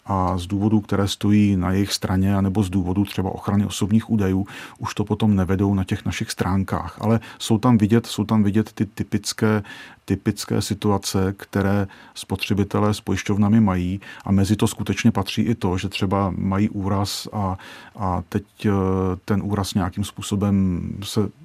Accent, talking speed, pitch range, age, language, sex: native, 160 wpm, 95-105 Hz, 40-59, Czech, male